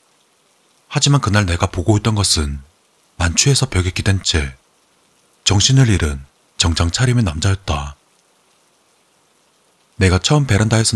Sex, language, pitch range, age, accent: male, Korean, 85-120 Hz, 30-49, native